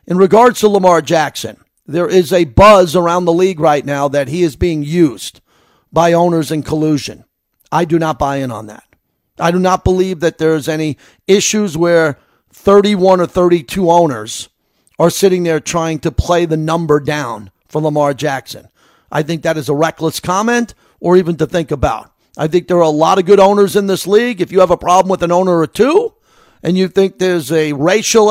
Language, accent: English, American